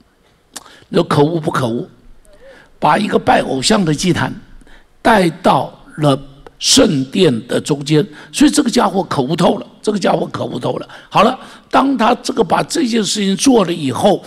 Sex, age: male, 60-79